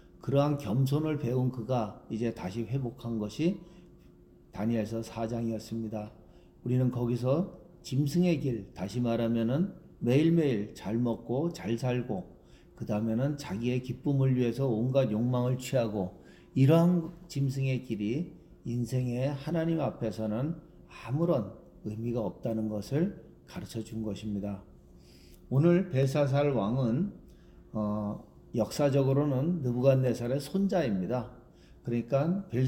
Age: 40-59